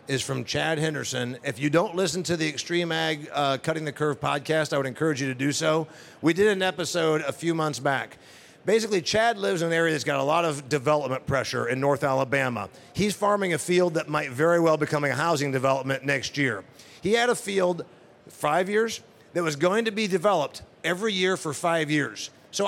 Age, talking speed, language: 50-69, 210 wpm, English